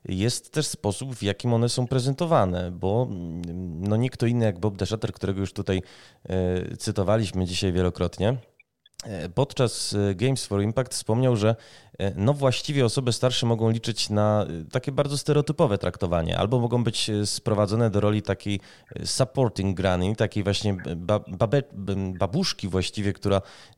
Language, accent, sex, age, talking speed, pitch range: Polish, native, male, 20-39, 130 wpm, 100-125 Hz